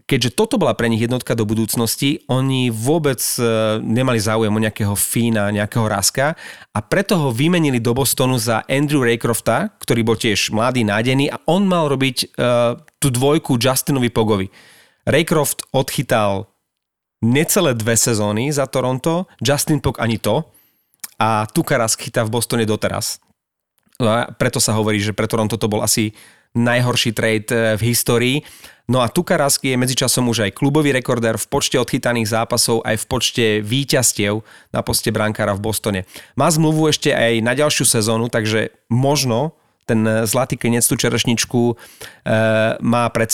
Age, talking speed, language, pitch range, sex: 30-49, 155 wpm, Slovak, 110-140 Hz, male